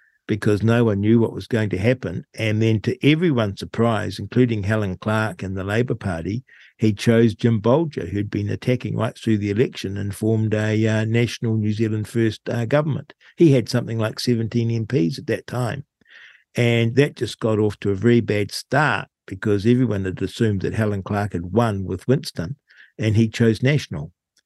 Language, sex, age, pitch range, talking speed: English, male, 50-69, 105-130 Hz, 185 wpm